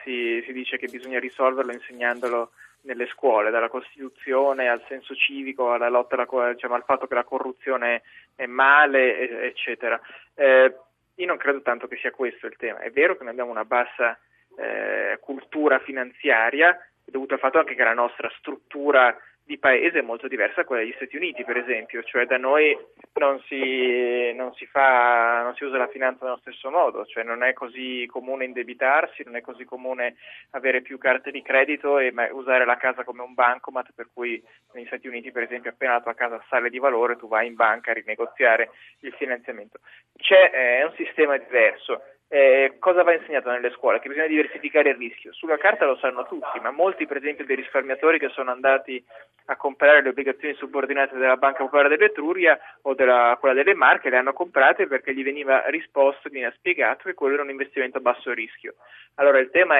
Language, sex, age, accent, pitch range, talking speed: Italian, male, 20-39, native, 120-140 Hz, 195 wpm